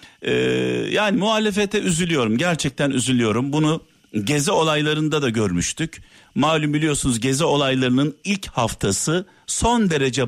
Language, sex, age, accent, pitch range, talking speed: Turkish, male, 50-69, native, 125-160 Hz, 110 wpm